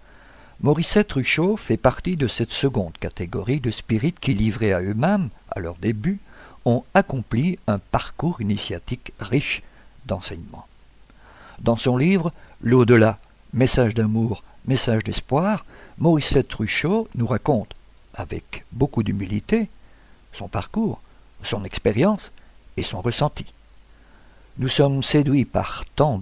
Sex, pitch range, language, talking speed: male, 100-135 Hz, French, 125 wpm